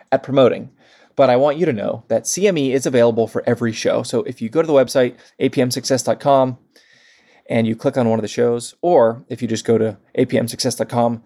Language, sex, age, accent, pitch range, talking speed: English, male, 20-39, American, 115-135 Hz, 205 wpm